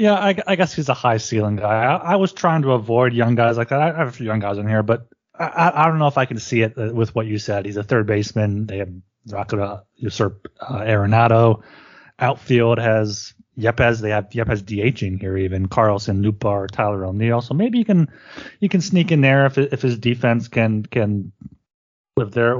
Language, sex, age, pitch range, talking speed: English, male, 30-49, 105-135 Hz, 215 wpm